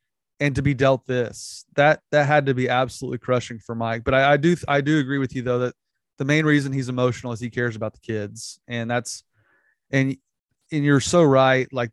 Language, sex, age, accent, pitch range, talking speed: English, male, 30-49, American, 120-150 Hz, 220 wpm